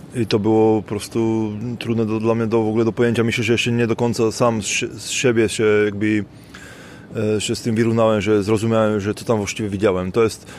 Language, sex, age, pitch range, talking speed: Polish, male, 20-39, 110-120 Hz, 215 wpm